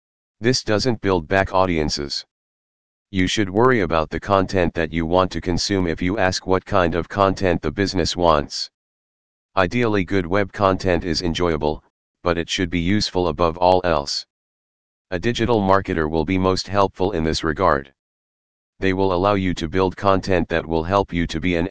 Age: 40-59